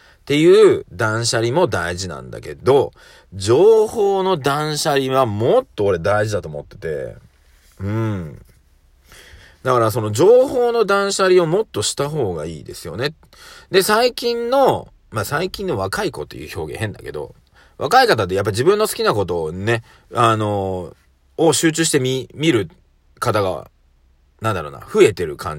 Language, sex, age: Japanese, male, 40-59